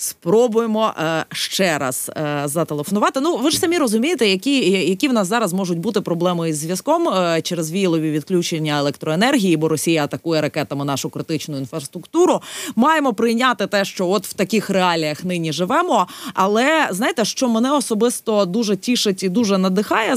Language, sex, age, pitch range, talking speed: Ukrainian, female, 20-39, 175-235 Hz, 160 wpm